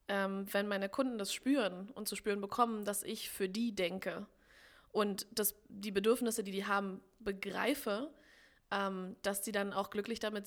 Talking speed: 155 wpm